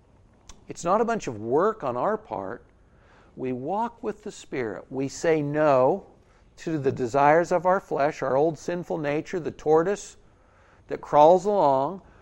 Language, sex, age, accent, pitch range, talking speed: English, male, 60-79, American, 130-185 Hz, 155 wpm